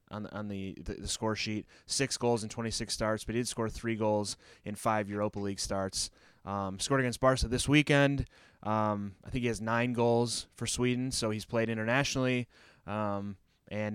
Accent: American